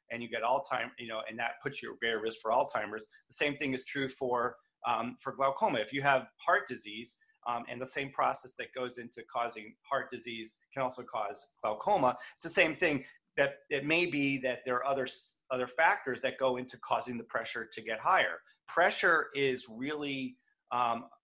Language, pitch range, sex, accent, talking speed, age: English, 125-150 Hz, male, American, 200 wpm, 40-59